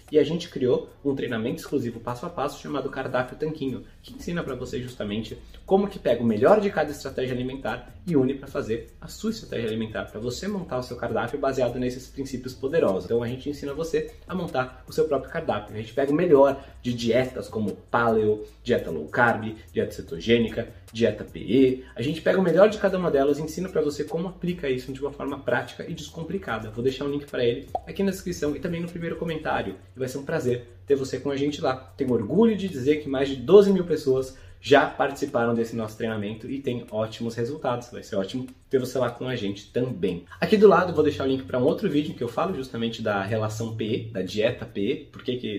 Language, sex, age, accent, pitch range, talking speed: Portuguese, male, 20-39, Brazilian, 115-150 Hz, 225 wpm